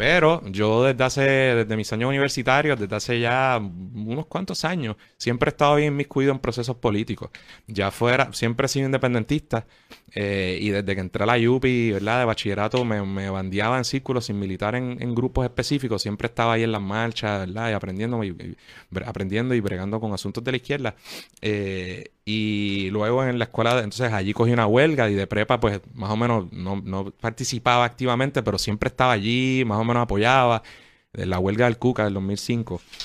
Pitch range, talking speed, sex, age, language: 100-125 Hz, 195 wpm, male, 30-49, Spanish